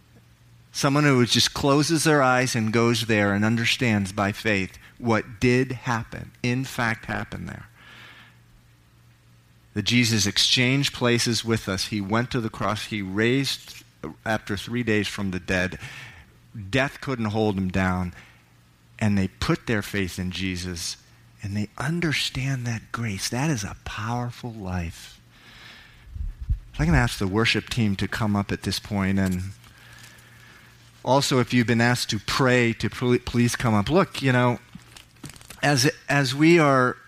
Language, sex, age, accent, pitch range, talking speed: English, male, 40-59, American, 100-125 Hz, 150 wpm